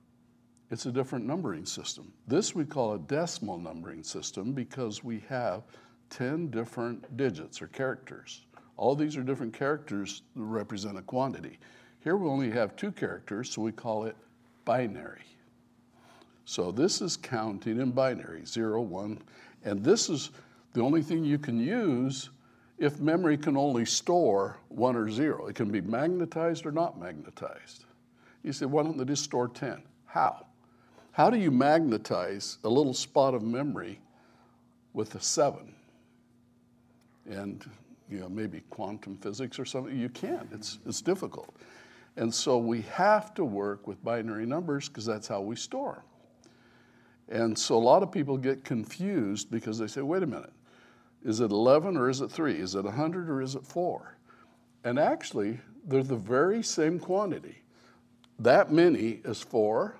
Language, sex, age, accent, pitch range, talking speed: English, male, 60-79, American, 110-135 Hz, 160 wpm